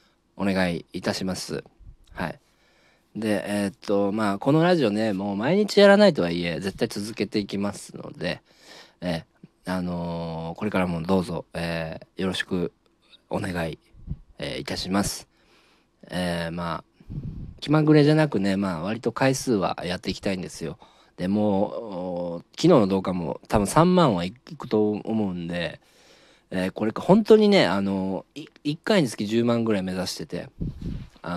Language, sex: Japanese, male